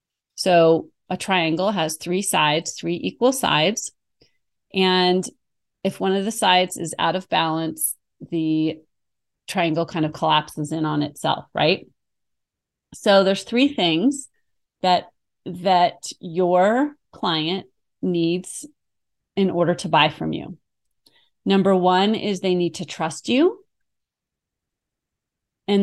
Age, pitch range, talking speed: 30-49, 165-195 Hz, 120 wpm